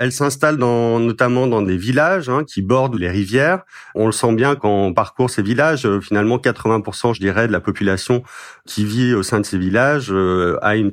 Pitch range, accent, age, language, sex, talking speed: 95-125 Hz, French, 40-59, French, male, 215 wpm